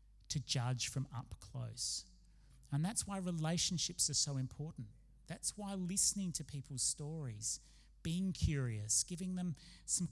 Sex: male